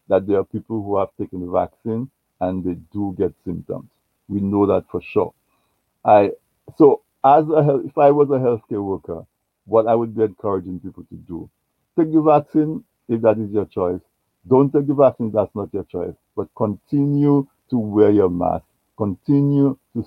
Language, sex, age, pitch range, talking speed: English, male, 60-79, 95-120 Hz, 190 wpm